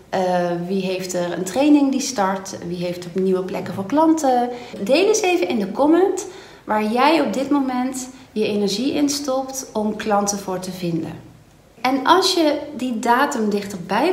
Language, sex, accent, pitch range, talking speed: Dutch, female, Dutch, 195-280 Hz, 175 wpm